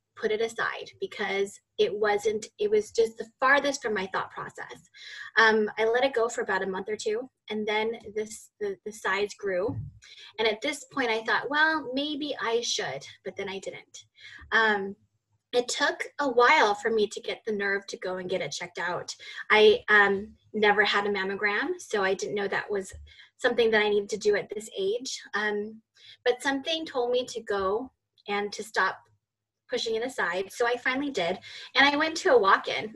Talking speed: 200 wpm